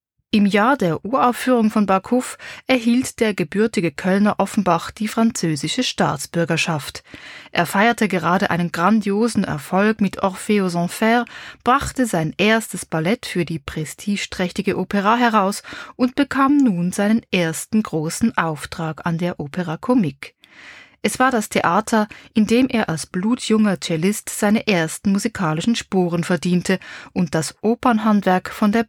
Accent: German